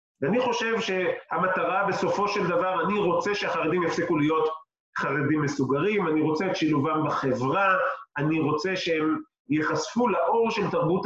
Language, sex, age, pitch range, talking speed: Hebrew, male, 30-49, 155-210 Hz, 135 wpm